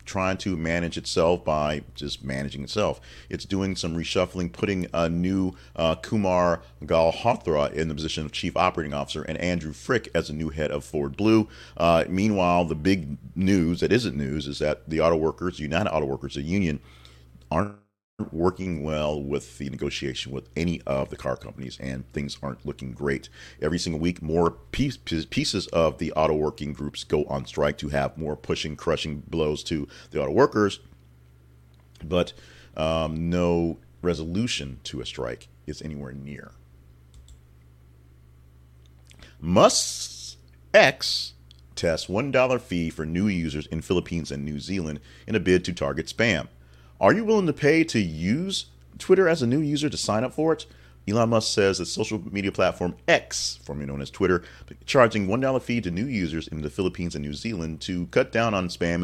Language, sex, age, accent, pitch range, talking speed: English, male, 40-59, American, 70-95 Hz, 175 wpm